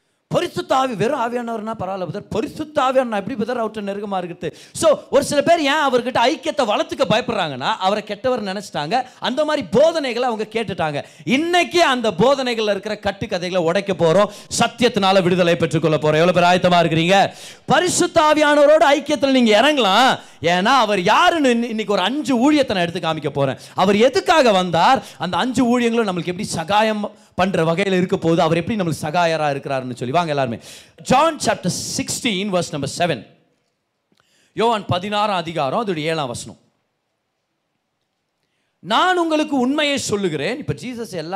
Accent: native